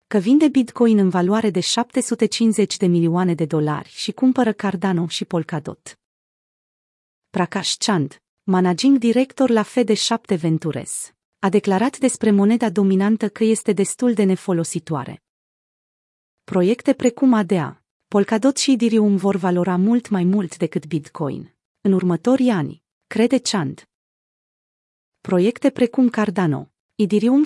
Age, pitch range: 30-49, 180-235 Hz